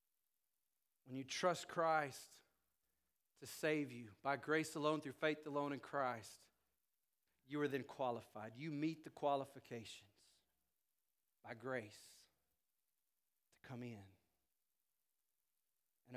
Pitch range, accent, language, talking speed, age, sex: 125-170 Hz, American, English, 110 wpm, 40-59, male